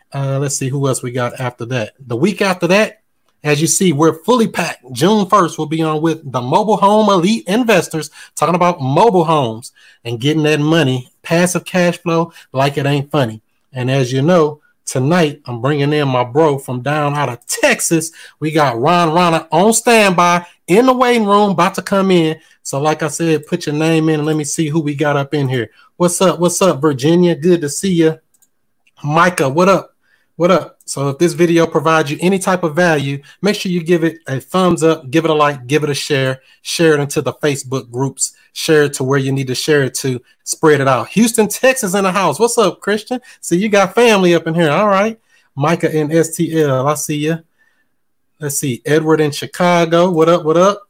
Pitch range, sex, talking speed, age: 145-180 Hz, male, 215 wpm, 30-49